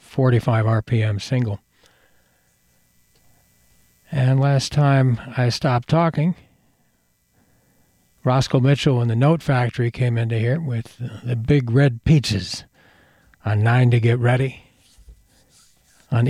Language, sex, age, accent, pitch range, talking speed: English, male, 60-79, American, 110-135 Hz, 105 wpm